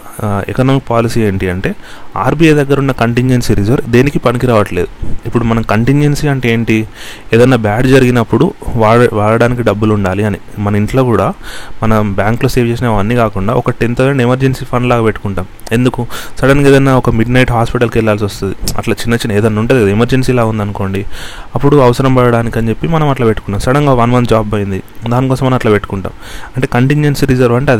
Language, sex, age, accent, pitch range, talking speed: Telugu, male, 30-49, native, 105-125 Hz, 170 wpm